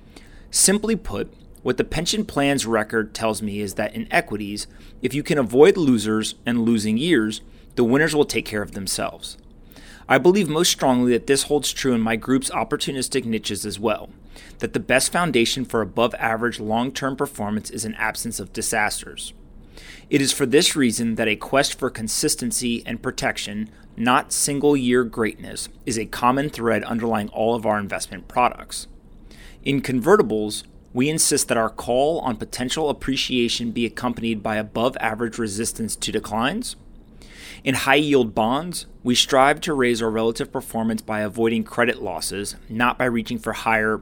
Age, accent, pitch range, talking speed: 30-49, American, 110-135 Hz, 160 wpm